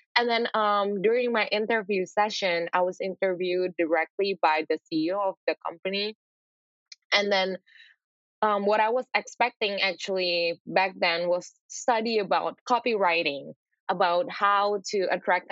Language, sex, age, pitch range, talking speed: English, female, 10-29, 180-225 Hz, 135 wpm